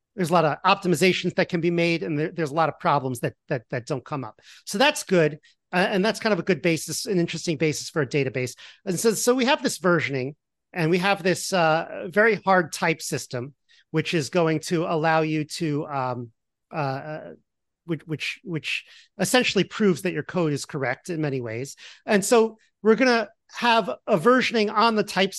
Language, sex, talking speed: English, male, 205 wpm